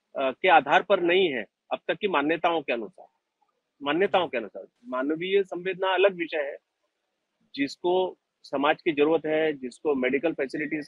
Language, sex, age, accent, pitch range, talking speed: Hindi, male, 30-49, native, 145-180 Hz, 150 wpm